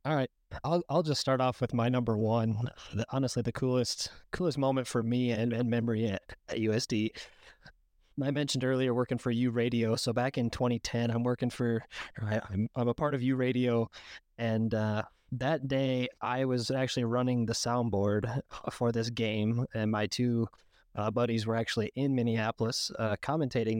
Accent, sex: American, male